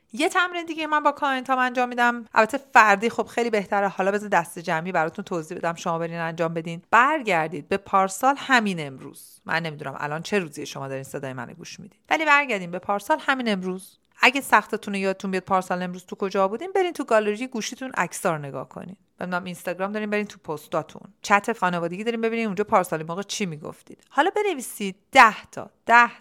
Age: 40-59